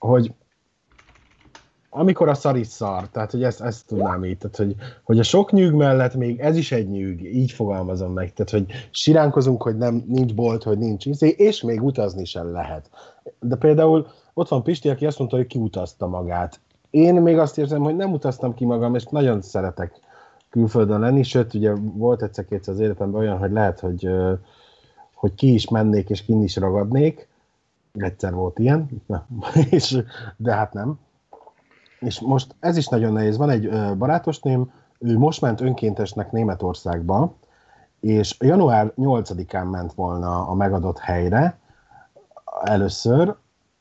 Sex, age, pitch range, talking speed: male, 30-49, 100-130 Hz, 155 wpm